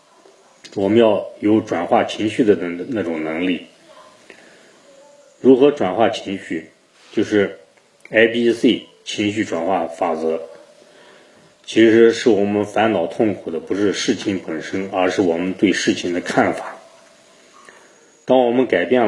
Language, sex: Chinese, male